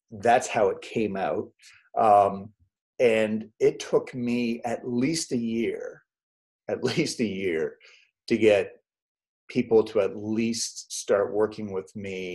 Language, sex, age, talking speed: English, male, 30-49, 135 wpm